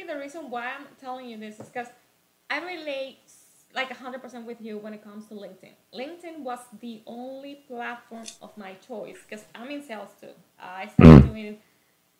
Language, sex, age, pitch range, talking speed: English, female, 20-39, 225-270 Hz, 190 wpm